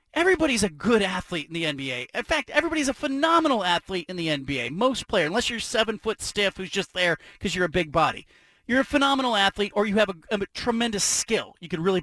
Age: 40-59